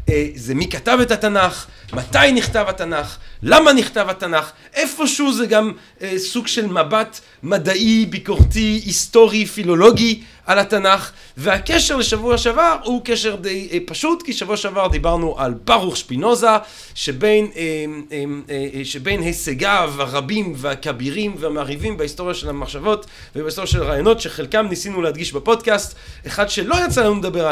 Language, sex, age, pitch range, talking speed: Hebrew, male, 40-59, 160-215 Hz, 125 wpm